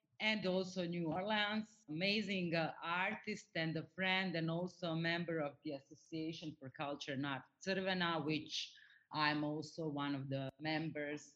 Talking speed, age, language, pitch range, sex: 155 wpm, 30-49, English, 145-190 Hz, female